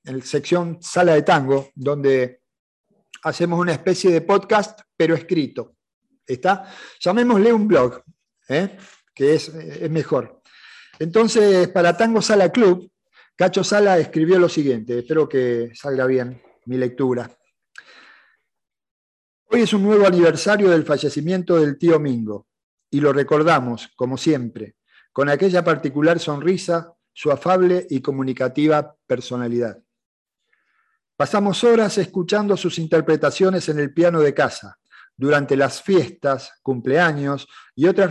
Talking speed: 125 wpm